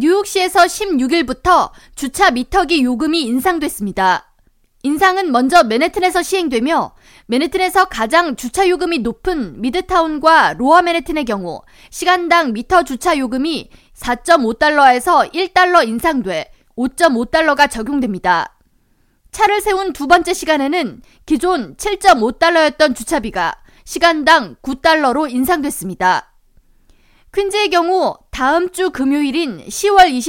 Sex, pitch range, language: female, 255-360 Hz, Korean